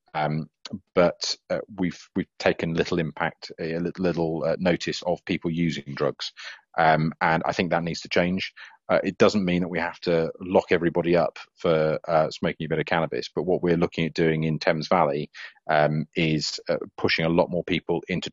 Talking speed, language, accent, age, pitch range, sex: 200 wpm, English, British, 30-49, 80-90 Hz, male